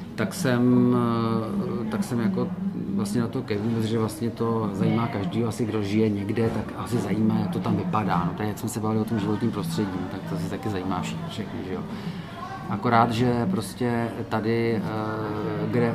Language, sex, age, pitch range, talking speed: Czech, male, 40-59, 110-125 Hz, 180 wpm